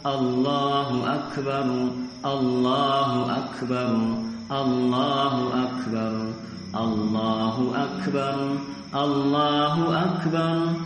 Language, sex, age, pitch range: Indonesian, male, 40-59, 125-160 Hz